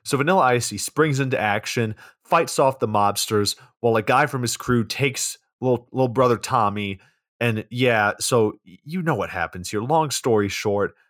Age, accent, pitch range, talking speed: 30-49, American, 95-125 Hz, 180 wpm